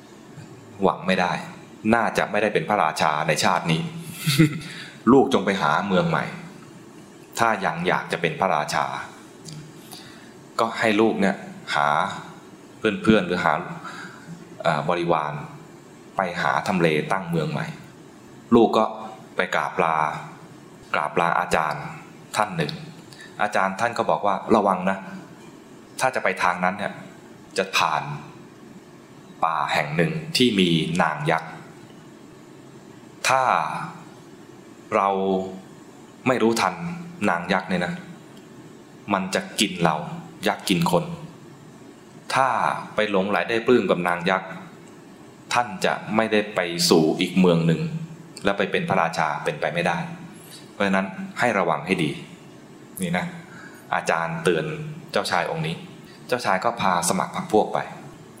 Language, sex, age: English, male, 20-39